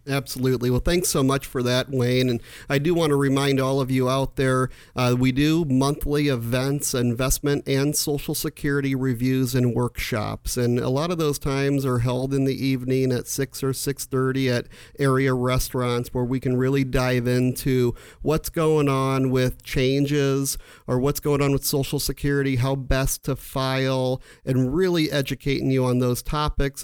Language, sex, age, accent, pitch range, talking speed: English, male, 40-59, American, 125-145 Hz, 175 wpm